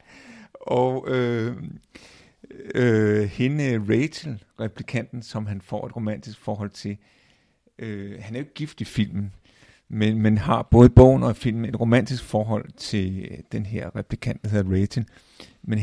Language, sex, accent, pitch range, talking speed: Danish, male, native, 110-135 Hz, 150 wpm